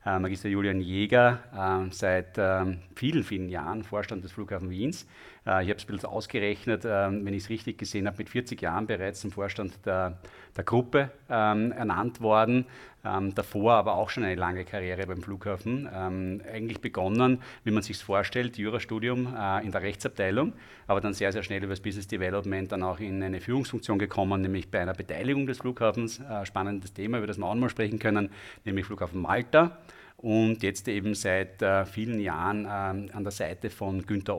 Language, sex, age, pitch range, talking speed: German, male, 30-49, 95-110 Hz, 180 wpm